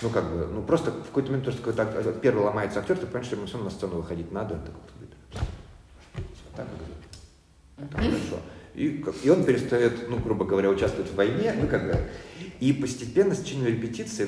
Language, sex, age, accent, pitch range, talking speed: Russian, male, 40-59, native, 85-115 Hz, 210 wpm